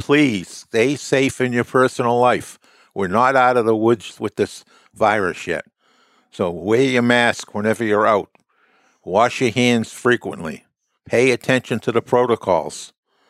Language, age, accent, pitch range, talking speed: English, 60-79, American, 105-120 Hz, 150 wpm